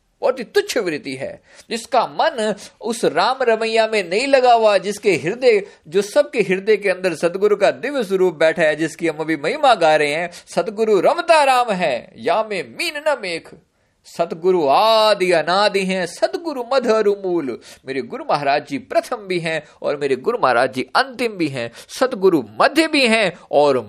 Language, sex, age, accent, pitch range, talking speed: Hindi, male, 50-69, native, 140-230 Hz, 155 wpm